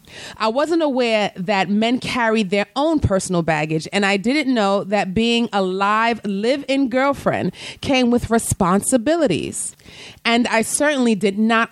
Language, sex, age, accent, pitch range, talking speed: English, female, 30-49, American, 180-230 Hz, 150 wpm